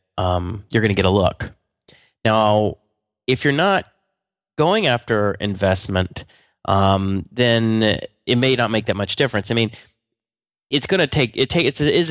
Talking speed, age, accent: 175 wpm, 30-49, American